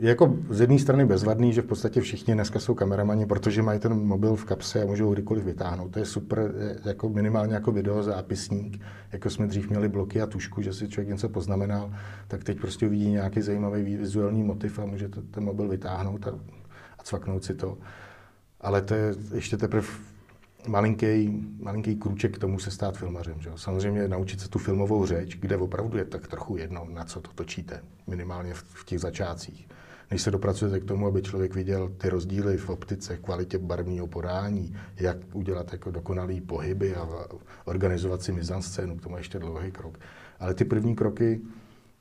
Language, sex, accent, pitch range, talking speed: Czech, male, native, 95-105 Hz, 185 wpm